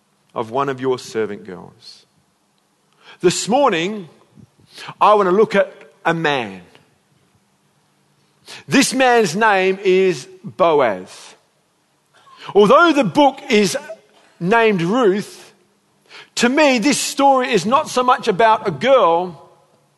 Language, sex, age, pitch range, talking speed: English, male, 50-69, 195-255 Hz, 110 wpm